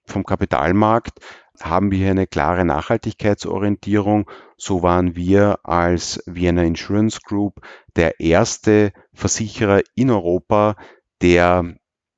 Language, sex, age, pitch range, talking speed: German, male, 30-49, 90-105 Hz, 105 wpm